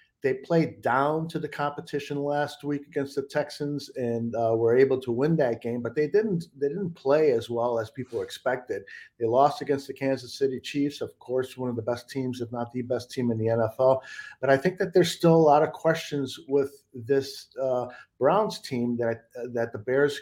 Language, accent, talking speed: English, American, 215 wpm